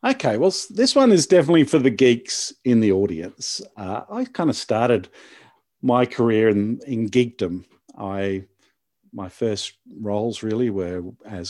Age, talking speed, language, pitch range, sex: 50-69, 145 wpm, English, 100-130 Hz, male